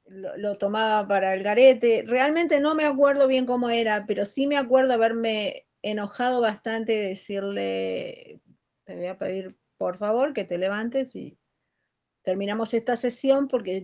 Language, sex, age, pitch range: Spanish, female, 30-49, 185-235 Hz